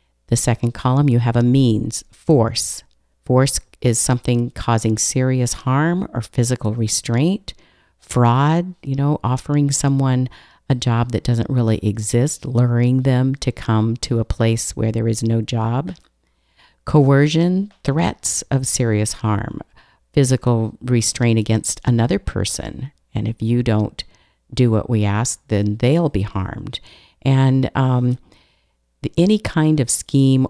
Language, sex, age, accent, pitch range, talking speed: English, female, 50-69, American, 110-130 Hz, 135 wpm